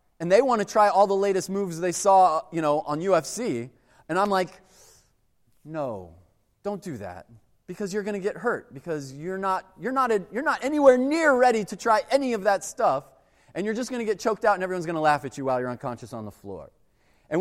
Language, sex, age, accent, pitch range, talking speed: English, male, 30-49, American, 135-215 Hz, 230 wpm